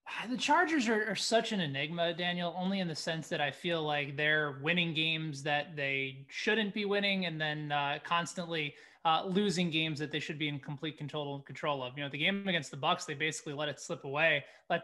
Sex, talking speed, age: male, 220 wpm, 20-39